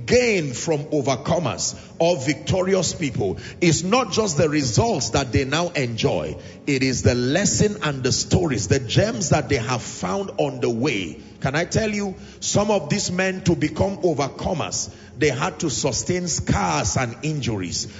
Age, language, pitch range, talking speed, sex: 40-59, English, 120-185 Hz, 165 wpm, male